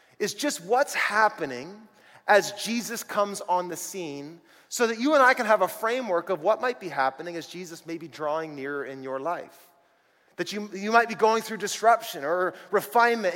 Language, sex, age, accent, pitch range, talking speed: English, male, 30-49, American, 175-225 Hz, 195 wpm